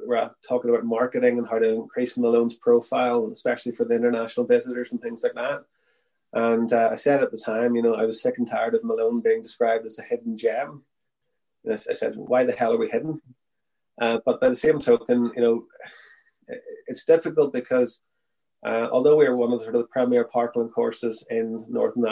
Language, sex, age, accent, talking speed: English, male, 20-39, Irish, 200 wpm